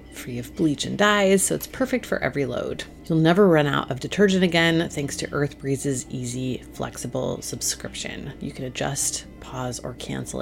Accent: American